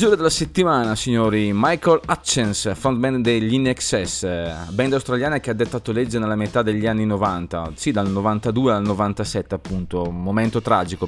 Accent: native